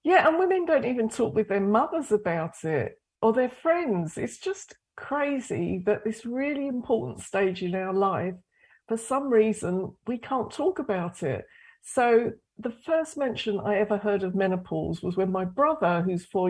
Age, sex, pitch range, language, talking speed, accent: 50-69, female, 175-235 Hz, English, 175 wpm, British